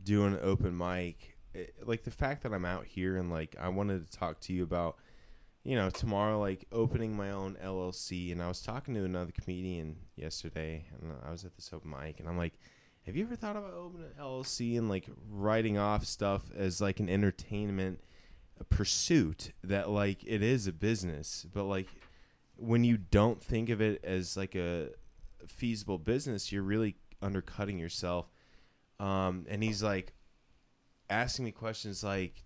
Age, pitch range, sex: 20-39, 90-110 Hz, male